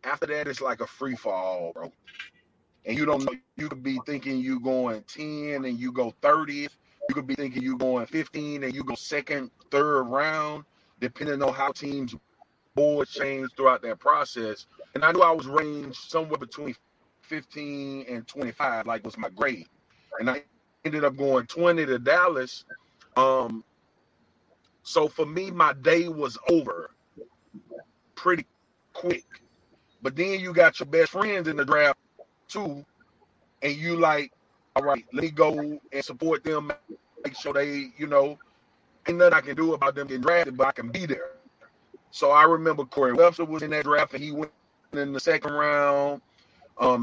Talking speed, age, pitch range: 175 wpm, 30-49, 130-160 Hz